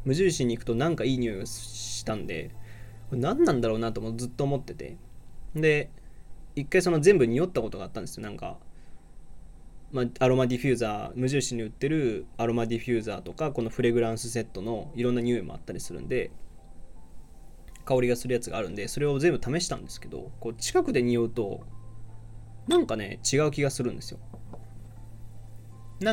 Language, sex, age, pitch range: Japanese, male, 20-39, 110-135 Hz